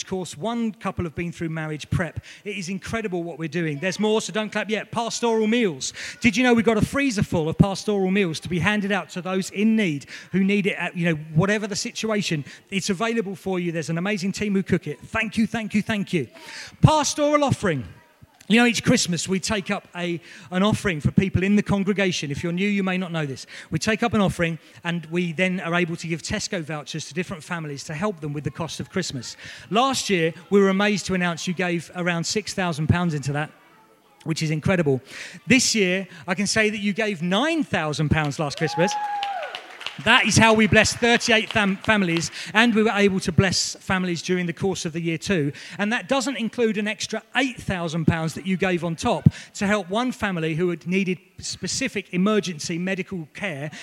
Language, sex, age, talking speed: English, male, 40-59, 210 wpm